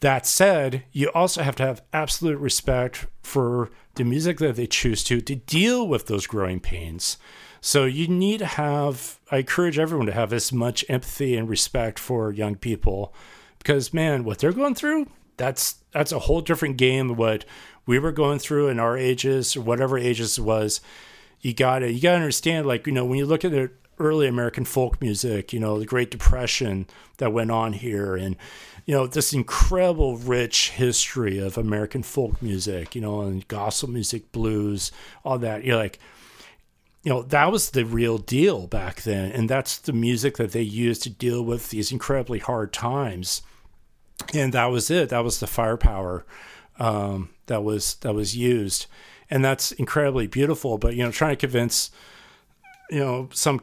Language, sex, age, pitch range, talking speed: English, male, 40-59, 110-140 Hz, 180 wpm